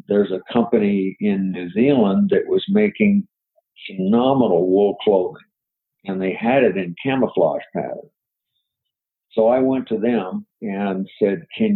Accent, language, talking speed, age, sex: American, English, 140 wpm, 50-69, male